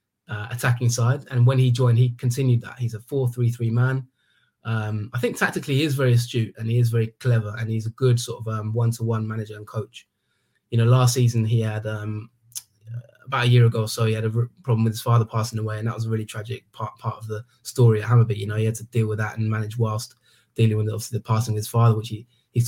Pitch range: 110-120 Hz